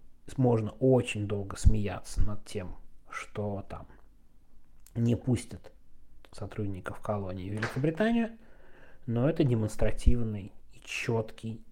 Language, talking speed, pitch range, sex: Russian, 95 wpm, 105-140 Hz, male